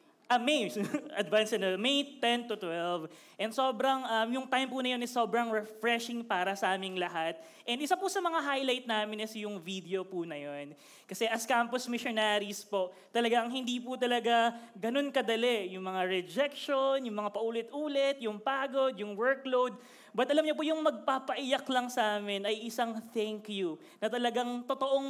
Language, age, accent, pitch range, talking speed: Filipino, 20-39, native, 205-255 Hz, 170 wpm